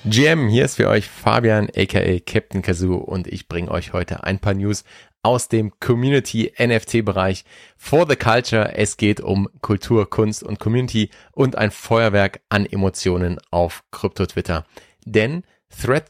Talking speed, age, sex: 155 wpm, 30-49, male